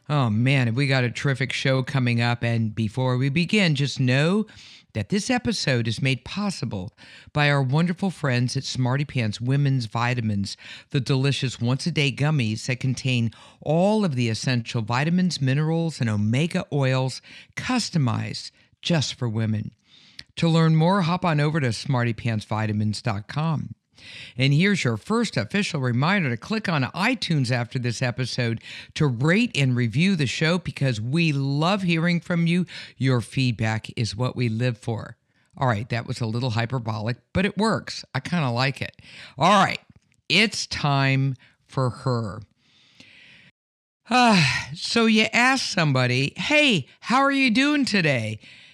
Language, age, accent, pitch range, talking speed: English, 60-79, American, 120-170 Hz, 150 wpm